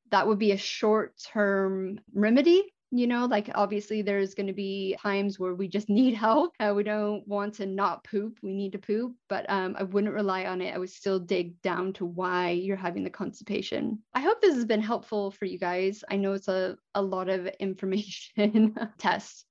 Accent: American